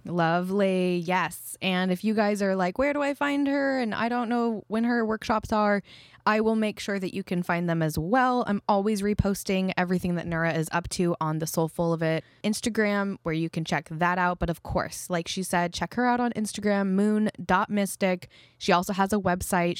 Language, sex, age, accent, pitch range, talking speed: English, female, 20-39, American, 165-210 Hz, 210 wpm